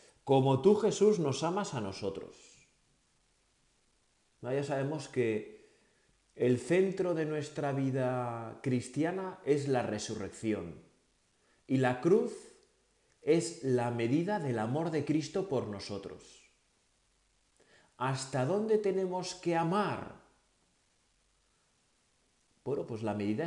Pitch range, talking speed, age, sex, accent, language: 115-165 Hz, 100 wpm, 40-59, male, Spanish, Spanish